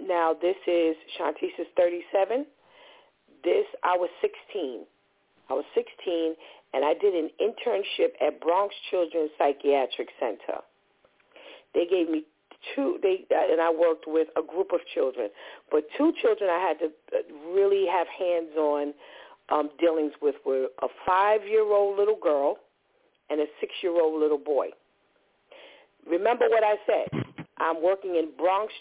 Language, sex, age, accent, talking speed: English, female, 50-69, American, 130 wpm